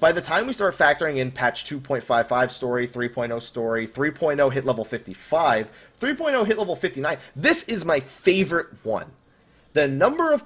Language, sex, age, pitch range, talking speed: English, male, 30-49, 125-190 Hz, 160 wpm